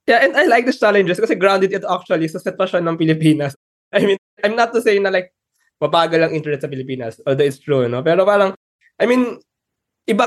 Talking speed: 210 wpm